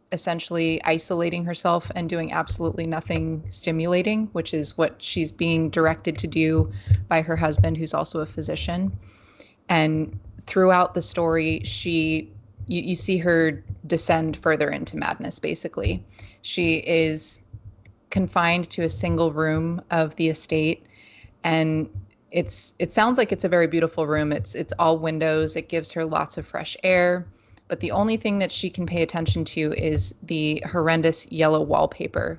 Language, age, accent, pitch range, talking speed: English, 20-39, American, 145-170 Hz, 155 wpm